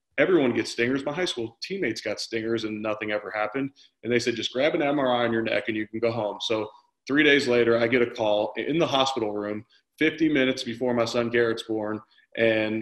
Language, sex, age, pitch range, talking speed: English, male, 30-49, 110-125 Hz, 225 wpm